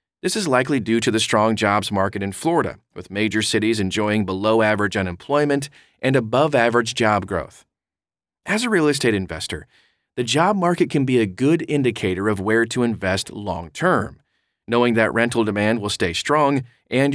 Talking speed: 165 wpm